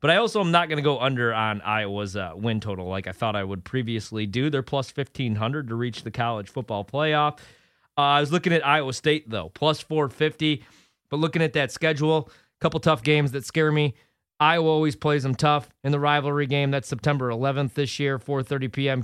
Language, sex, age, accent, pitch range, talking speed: English, male, 30-49, American, 120-155 Hz, 215 wpm